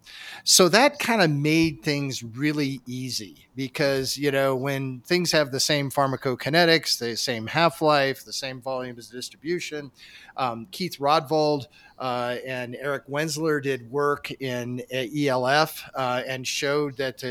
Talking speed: 145 wpm